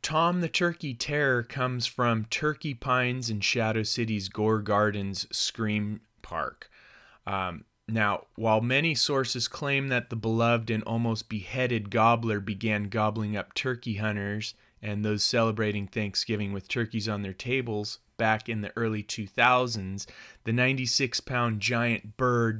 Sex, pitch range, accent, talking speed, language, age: male, 105-120 Hz, American, 140 wpm, English, 30-49